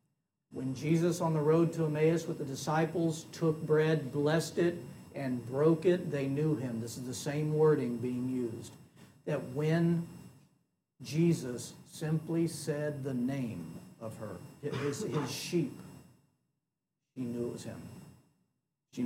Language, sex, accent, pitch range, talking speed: English, male, American, 140-170 Hz, 145 wpm